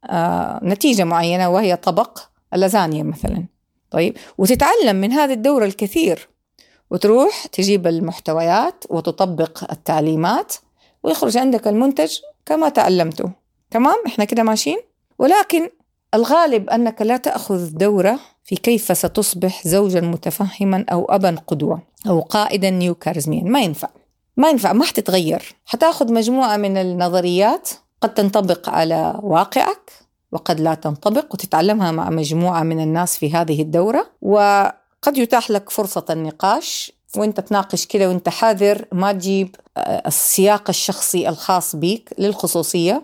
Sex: female